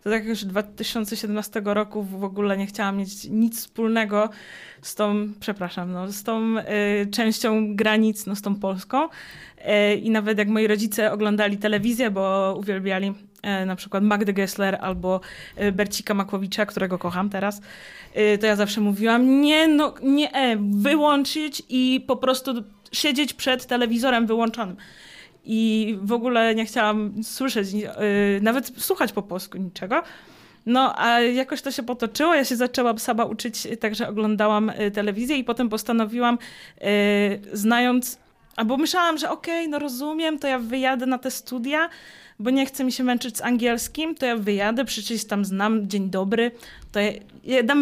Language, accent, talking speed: Polish, native, 155 wpm